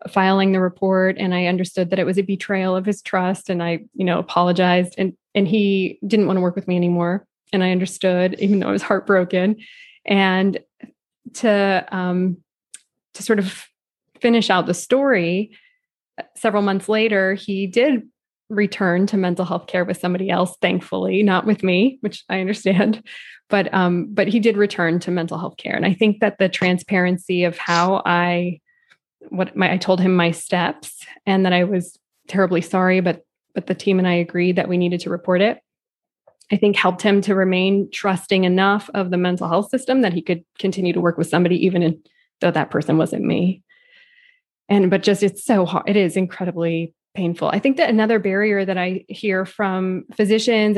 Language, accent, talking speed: English, American, 190 wpm